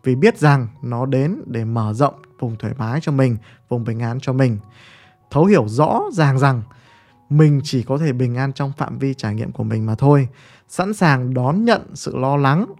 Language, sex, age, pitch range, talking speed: Vietnamese, male, 20-39, 120-150 Hz, 210 wpm